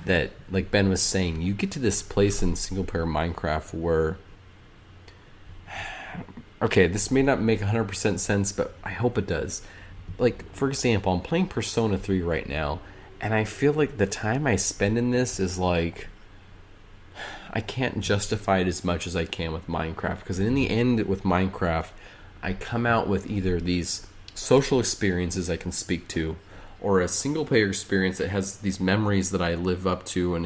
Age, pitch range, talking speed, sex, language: 30-49, 90-110 Hz, 185 wpm, male, English